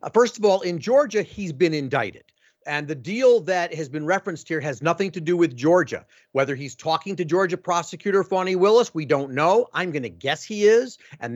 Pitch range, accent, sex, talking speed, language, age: 150-190 Hz, American, male, 205 wpm, English, 50-69